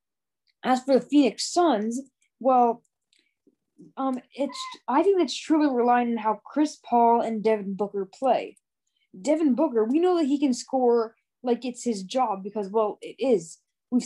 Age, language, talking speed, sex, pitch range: 10-29, English, 160 wpm, female, 225-290 Hz